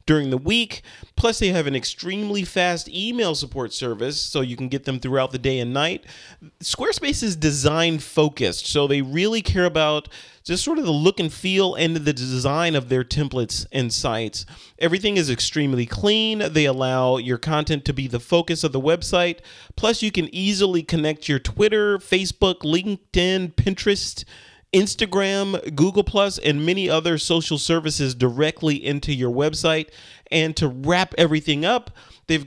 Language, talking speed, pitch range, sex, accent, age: English, 165 wpm, 135-175 Hz, male, American, 30-49